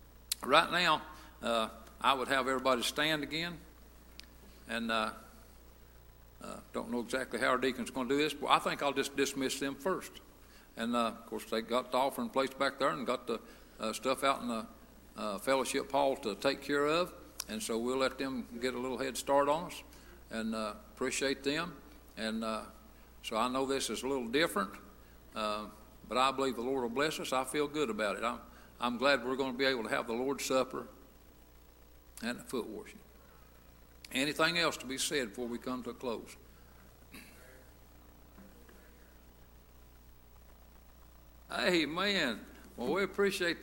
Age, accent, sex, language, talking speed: 60-79, American, male, English, 175 wpm